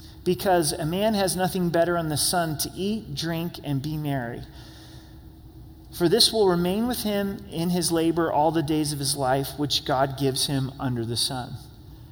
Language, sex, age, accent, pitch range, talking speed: English, male, 30-49, American, 135-175 Hz, 185 wpm